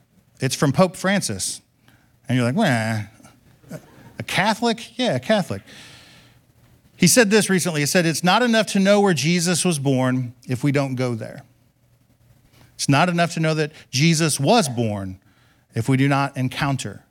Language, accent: English, American